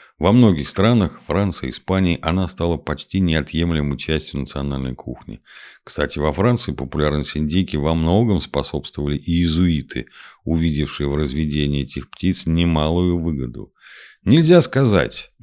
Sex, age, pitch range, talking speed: male, 50-69, 75-100 Hz, 130 wpm